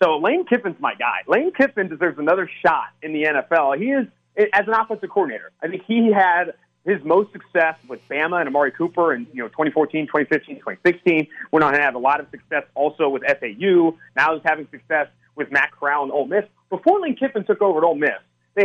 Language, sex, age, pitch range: English, male, 30-49, 150-215 Hz